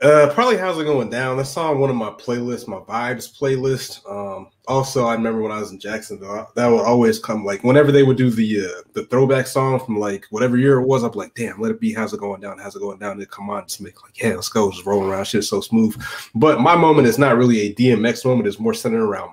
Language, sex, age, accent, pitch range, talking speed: English, male, 20-39, American, 110-140 Hz, 265 wpm